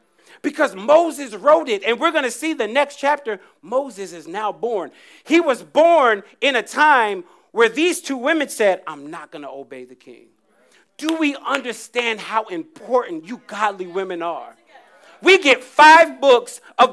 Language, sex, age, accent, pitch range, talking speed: English, male, 40-59, American, 195-295 Hz, 170 wpm